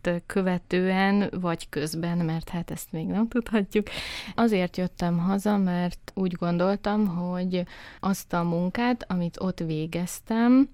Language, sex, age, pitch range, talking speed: Hungarian, female, 20-39, 175-195 Hz, 125 wpm